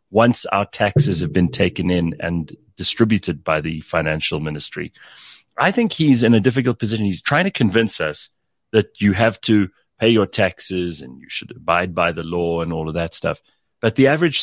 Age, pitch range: 40-59, 95-130 Hz